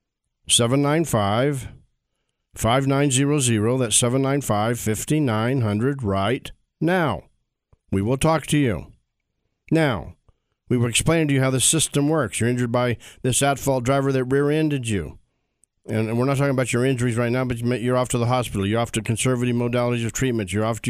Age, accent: 50-69, American